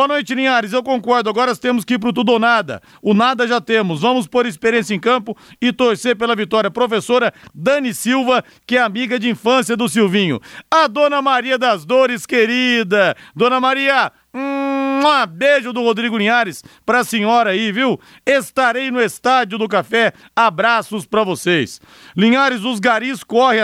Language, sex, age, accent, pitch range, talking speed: Portuguese, male, 40-59, Brazilian, 210-245 Hz, 170 wpm